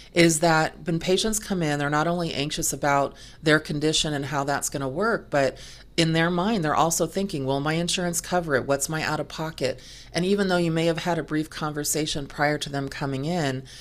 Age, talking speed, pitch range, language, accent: 30-49, 215 wpm, 135-165 Hz, English, American